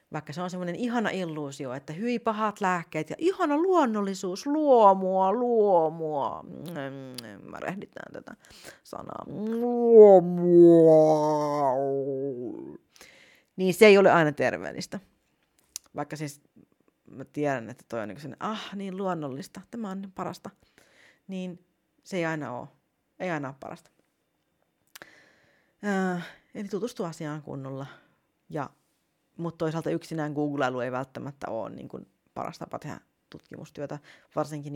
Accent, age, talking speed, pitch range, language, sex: native, 40-59, 120 wpm, 150-245 Hz, Finnish, female